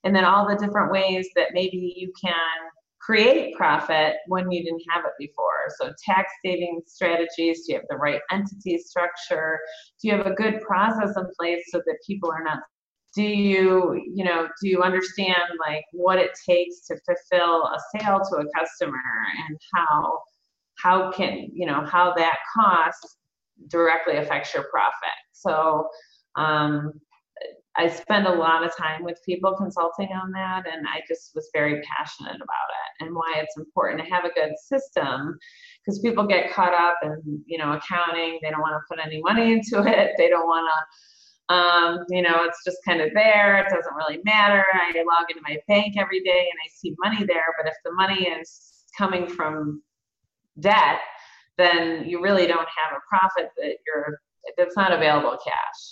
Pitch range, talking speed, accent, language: 165-195 Hz, 180 wpm, American, English